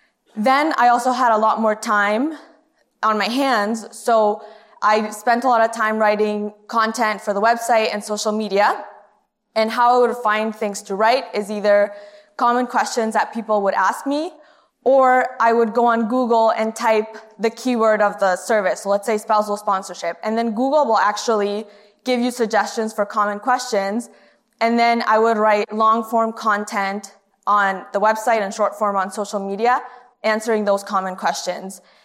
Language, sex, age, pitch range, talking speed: English, female, 20-39, 210-240 Hz, 170 wpm